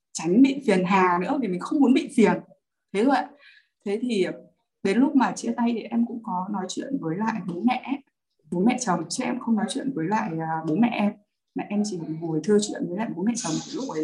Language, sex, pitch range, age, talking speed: Vietnamese, female, 185-265 Hz, 20-39, 245 wpm